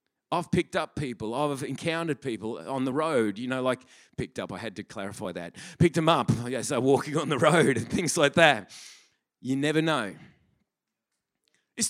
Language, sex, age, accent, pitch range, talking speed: English, male, 40-59, Australian, 135-175 Hz, 185 wpm